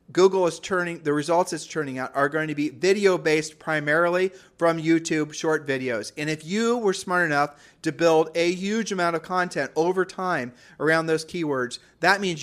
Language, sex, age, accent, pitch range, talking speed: English, male, 40-59, American, 140-175 Hz, 190 wpm